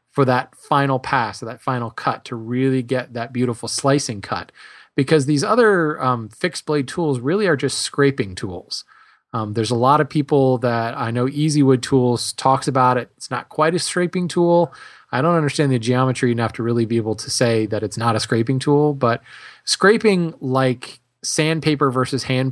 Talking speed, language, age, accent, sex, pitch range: 190 wpm, English, 20-39, American, male, 120-150 Hz